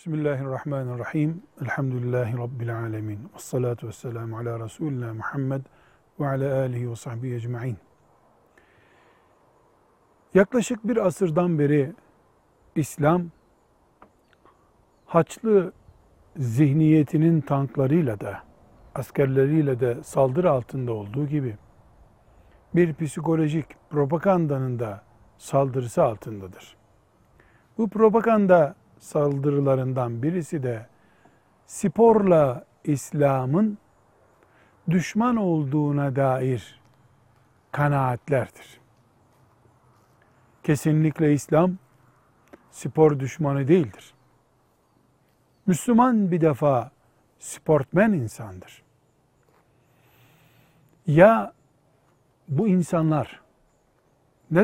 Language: Turkish